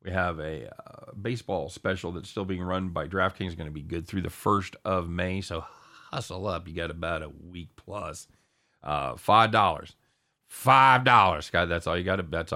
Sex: male